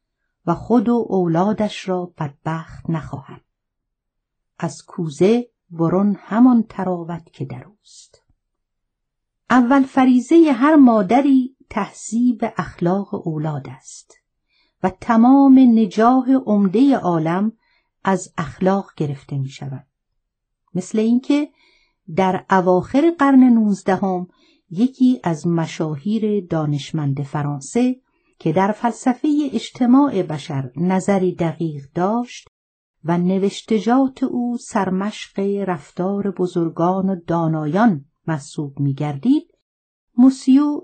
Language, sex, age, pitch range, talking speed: Persian, female, 50-69, 165-240 Hz, 95 wpm